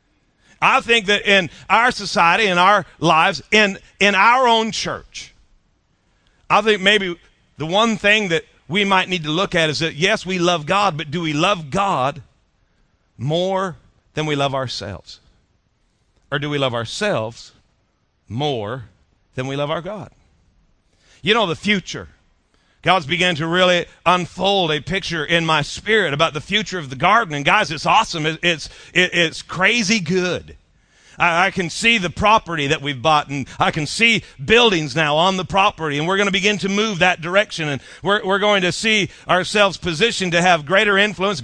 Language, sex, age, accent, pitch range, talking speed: English, male, 40-59, American, 155-200 Hz, 175 wpm